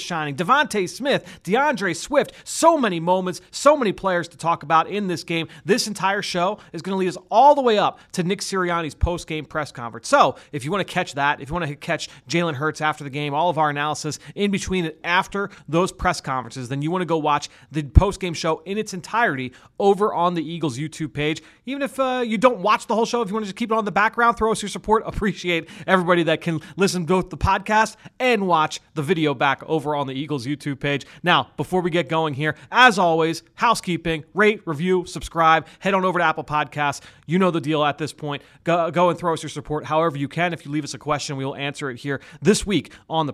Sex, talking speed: male, 240 wpm